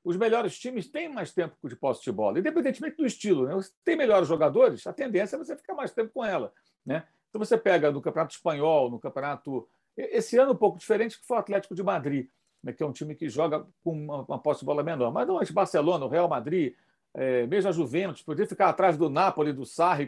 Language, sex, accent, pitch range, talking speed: Portuguese, male, Brazilian, 155-235 Hz, 240 wpm